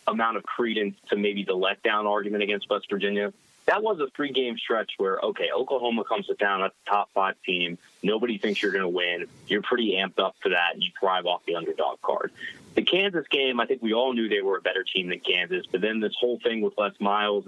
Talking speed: 240 wpm